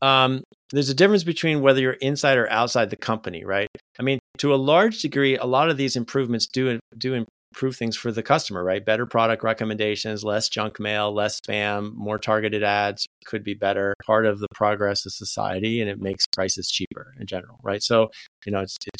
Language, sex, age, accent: English, male, 40-59, American